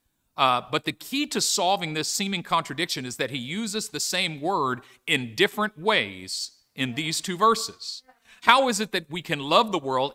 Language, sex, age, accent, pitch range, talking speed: English, male, 50-69, American, 150-215 Hz, 190 wpm